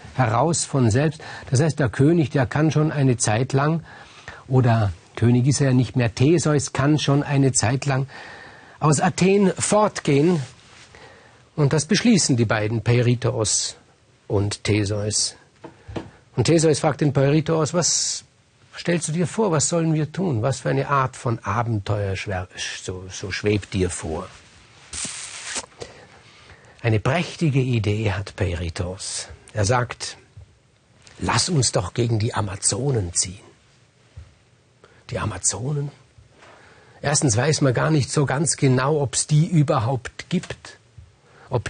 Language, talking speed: German, 130 wpm